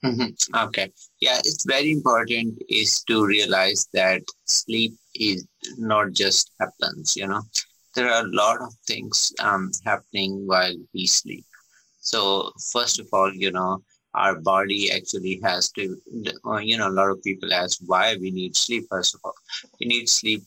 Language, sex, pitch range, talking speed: English, male, 95-110 Hz, 160 wpm